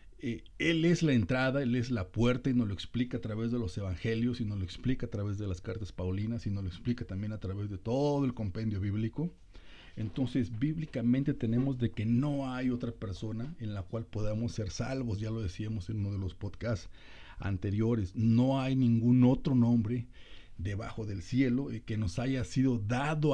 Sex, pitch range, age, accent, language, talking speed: male, 100-130 Hz, 50-69, Mexican, Spanish, 200 wpm